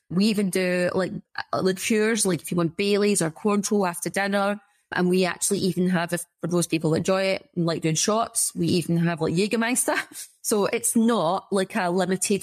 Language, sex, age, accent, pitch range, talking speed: English, female, 20-39, British, 175-205 Hz, 200 wpm